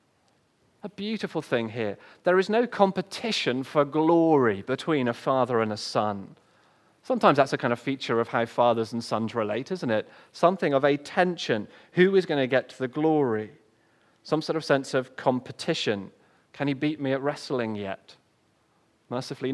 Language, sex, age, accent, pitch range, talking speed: English, male, 30-49, British, 120-160 Hz, 170 wpm